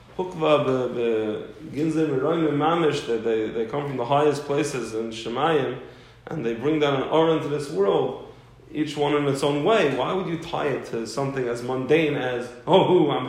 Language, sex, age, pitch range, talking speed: English, male, 20-39, 120-145 Hz, 165 wpm